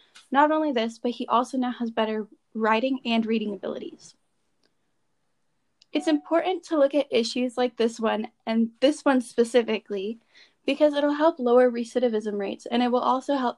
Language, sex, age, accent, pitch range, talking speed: English, female, 10-29, American, 225-265 Hz, 165 wpm